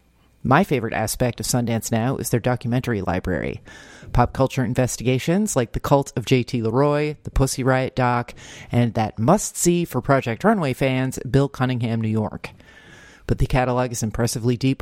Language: English